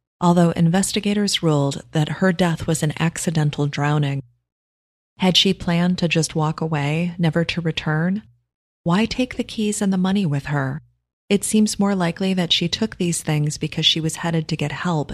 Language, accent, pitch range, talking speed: English, American, 145-175 Hz, 180 wpm